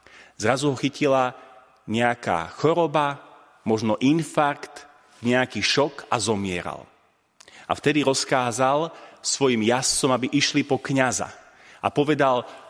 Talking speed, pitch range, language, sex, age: 105 wpm, 110-145 Hz, Slovak, male, 30-49